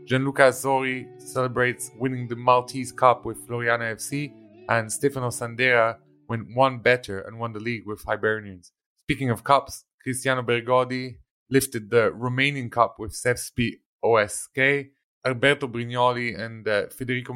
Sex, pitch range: male, 115-130 Hz